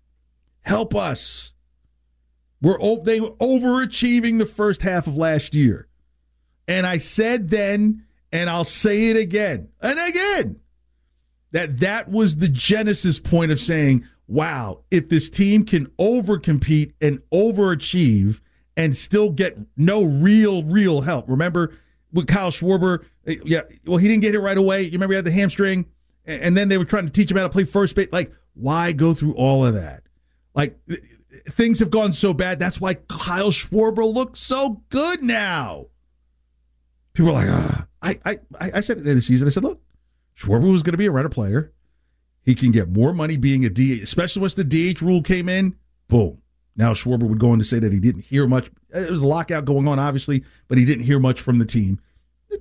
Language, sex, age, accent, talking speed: English, male, 40-59, American, 190 wpm